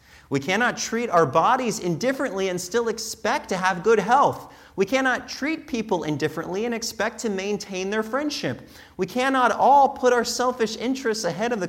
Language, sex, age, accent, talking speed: English, male, 30-49, American, 175 wpm